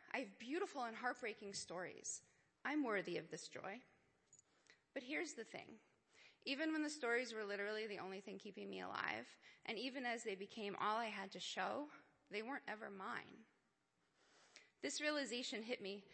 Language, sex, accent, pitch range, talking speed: English, female, American, 200-255 Hz, 165 wpm